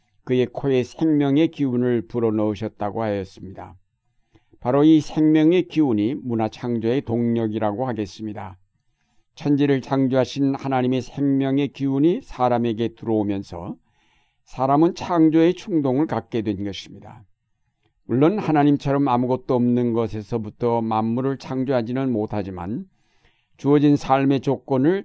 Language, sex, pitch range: Korean, male, 110-140 Hz